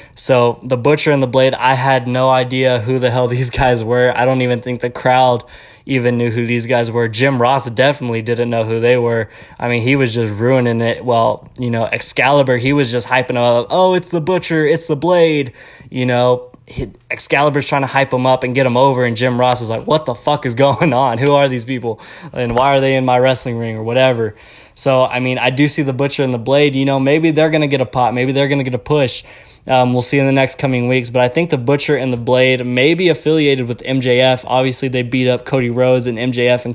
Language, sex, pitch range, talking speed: English, male, 120-135 Hz, 250 wpm